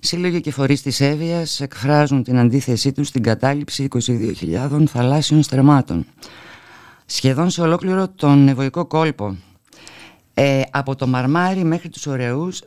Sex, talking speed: female, 130 wpm